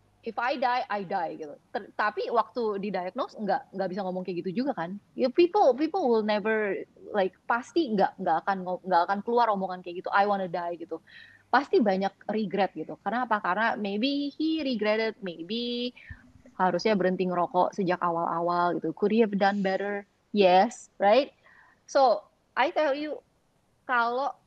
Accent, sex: native, female